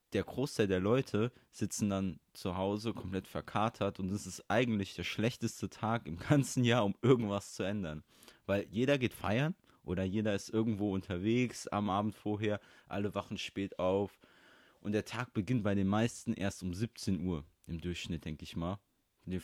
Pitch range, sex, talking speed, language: 95-115 Hz, male, 180 wpm, German